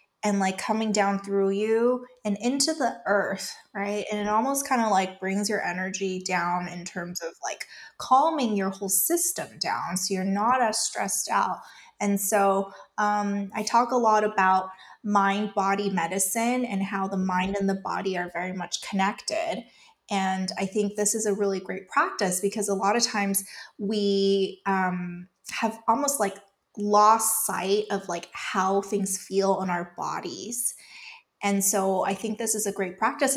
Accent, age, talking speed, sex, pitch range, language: American, 20-39, 170 wpm, female, 195-230 Hz, English